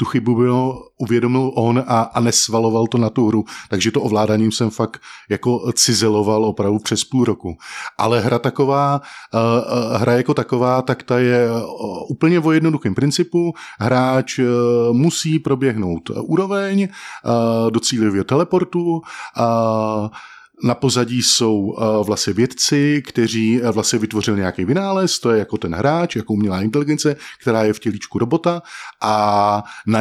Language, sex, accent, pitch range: Czech, male, native, 110-135 Hz